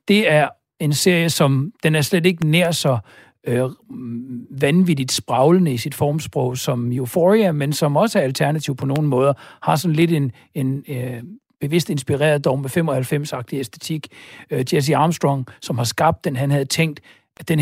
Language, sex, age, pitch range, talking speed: Danish, male, 60-79, 135-170 Hz, 175 wpm